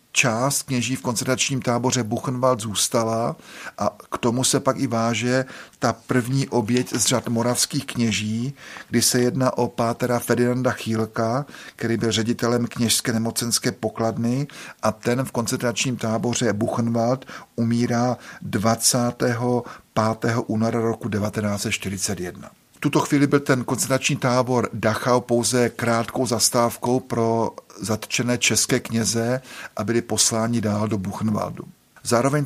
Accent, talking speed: native, 125 wpm